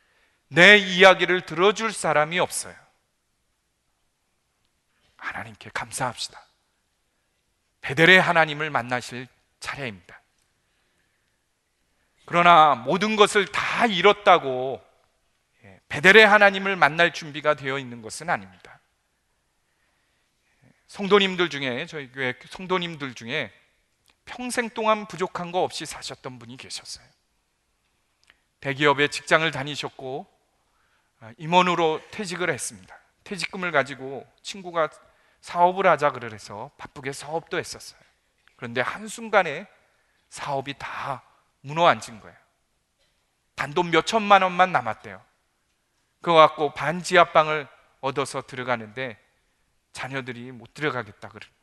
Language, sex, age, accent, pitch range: Korean, male, 40-59, native, 130-180 Hz